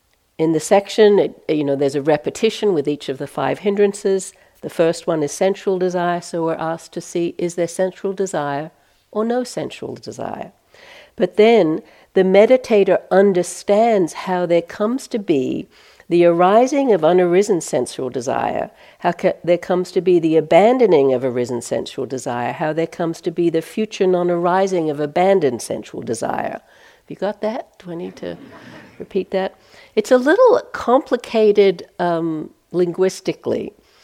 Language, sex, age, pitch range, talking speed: English, female, 60-79, 165-210 Hz, 155 wpm